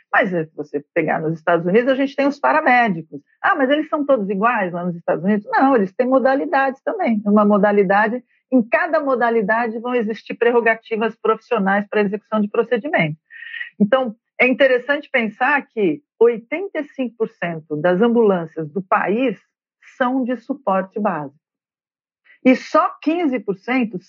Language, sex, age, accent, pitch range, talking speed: Portuguese, female, 50-69, Brazilian, 190-255 Hz, 140 wpm